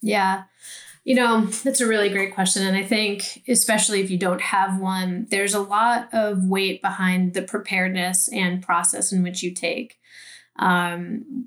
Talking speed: 165 wpm